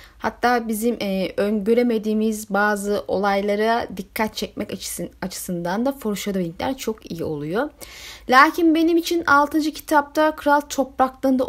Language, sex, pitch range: Turkish, female, 220-290 Hz